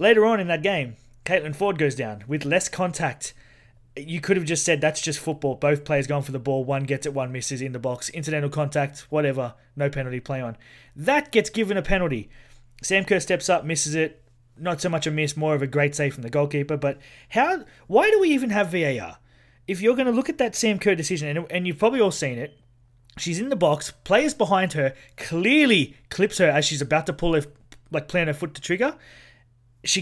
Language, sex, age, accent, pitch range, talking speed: English, male, 20-39, Australian, 140-180 Hz, 225 wpm